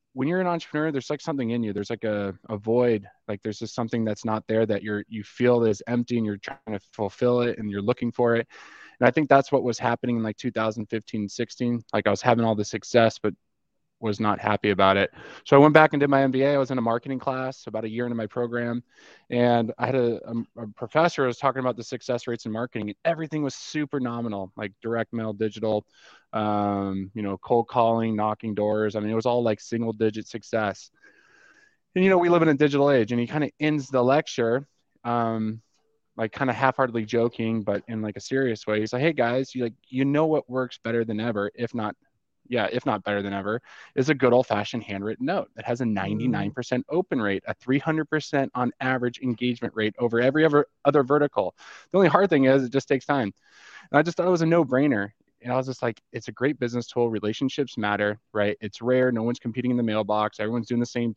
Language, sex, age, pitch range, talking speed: English, male, 20-39, 110-135 Hz, 230 wpm